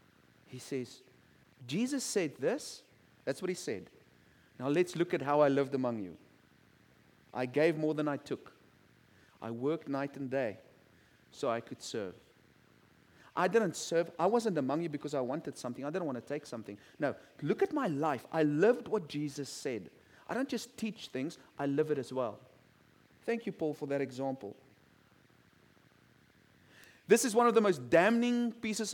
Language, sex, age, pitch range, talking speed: English, male, 40-59, 140-230 Hz, 175 wpm